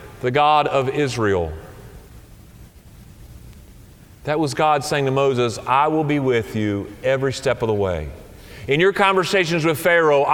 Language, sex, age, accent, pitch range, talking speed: English, male, 40-59, American, 140-185 Hz, 145 wpm